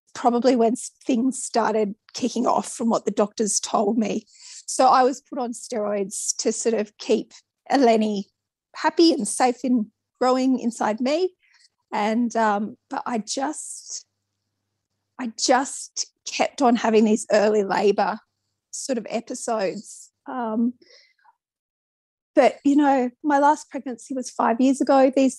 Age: 30-49